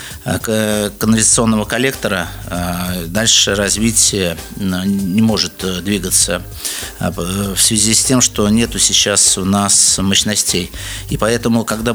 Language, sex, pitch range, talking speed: Russian, male, 95-110 Hz, 100 wpm